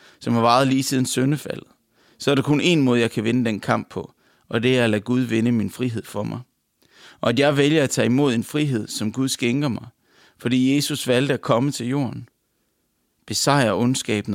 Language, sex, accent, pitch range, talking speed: English, male, Danish, 115-135 Hz, 215 wpm